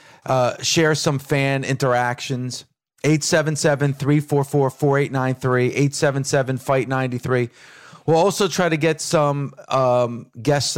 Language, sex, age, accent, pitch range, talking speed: English, male, 40-59, American, 125-145 Hz, 160 wpm